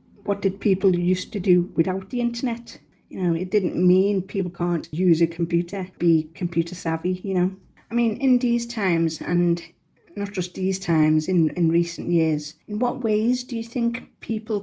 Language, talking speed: English, 185 wpm